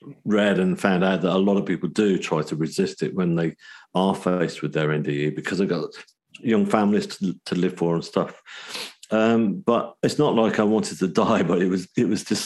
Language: English